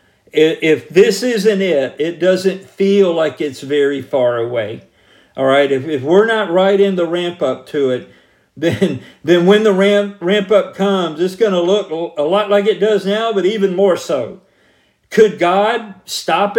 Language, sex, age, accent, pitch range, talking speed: English, male, 50-69, American, 165-205 Hz, 175 wpm